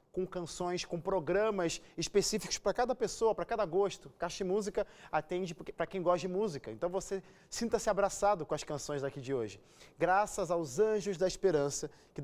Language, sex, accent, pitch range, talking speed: Portuguese, male, Brazilian, 160-195 Hz, 170 wpm